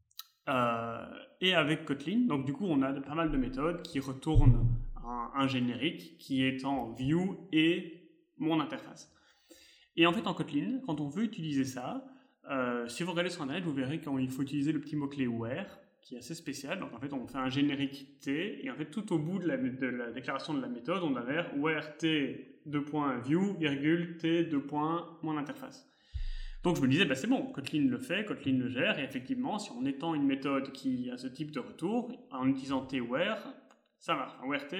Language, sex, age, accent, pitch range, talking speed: French, male, 30-49, French, 140-220 Hz, 200 wpm